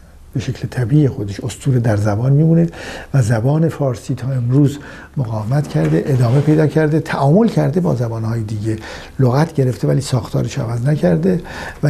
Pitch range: 115-145 Hz